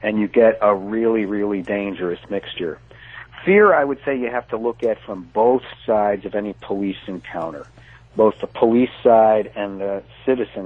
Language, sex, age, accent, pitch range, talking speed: English, male, 60-79, American, 105-125 Hz, 175 wpm